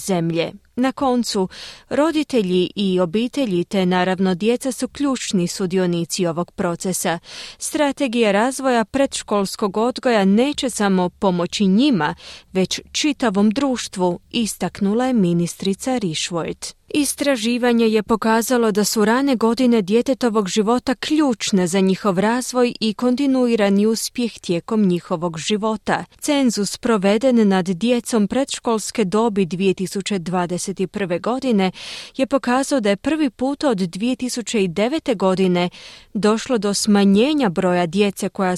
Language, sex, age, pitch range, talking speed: Croatian, female, 30-49, 190-250 Hz, 110 wpm